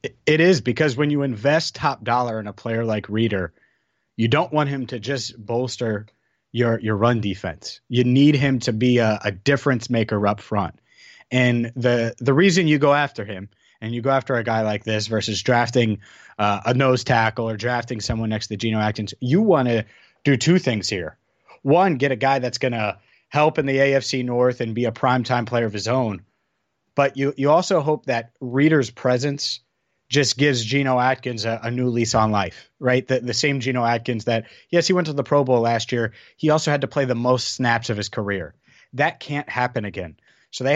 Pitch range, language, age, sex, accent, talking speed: 115-140 Hz, English, 30-49, male, American, 210 wpm